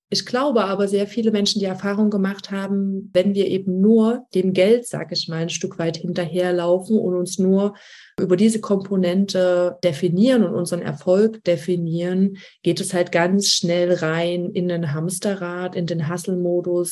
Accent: German